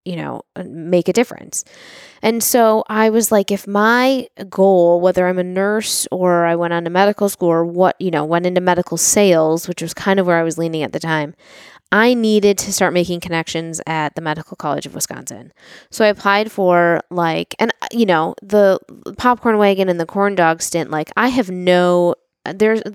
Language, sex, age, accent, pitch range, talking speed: English, female, 20-39, American, 175-215 Hz, 200 wpm